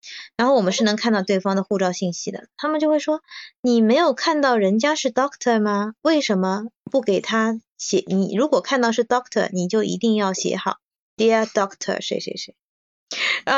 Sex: female